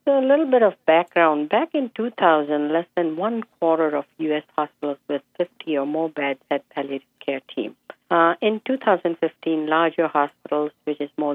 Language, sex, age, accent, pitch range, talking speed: English, female, 50-69, Indian, 145-175 Hz, 170 wpm